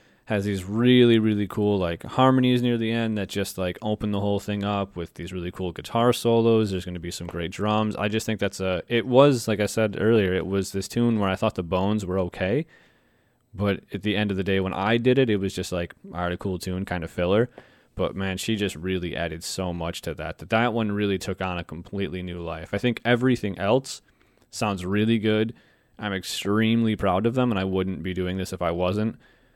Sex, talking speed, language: male, 235 wpm, English